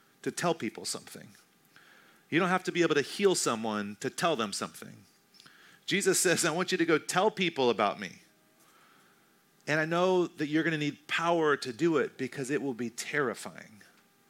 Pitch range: 125-160 Hz